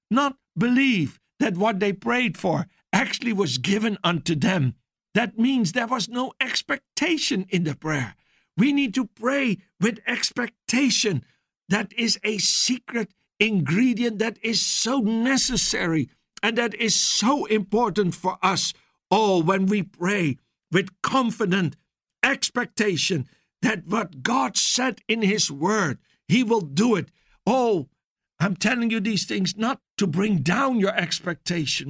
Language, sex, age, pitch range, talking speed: English, male, 60-79, 185-240 Hz, 135 wpm